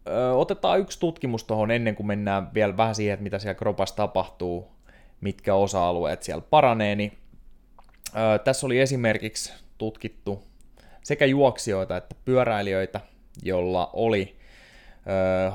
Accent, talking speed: native, 120 wpm